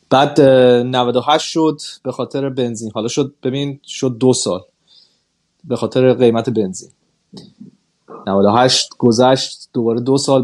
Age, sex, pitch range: 30-49, male, 120-140 Hz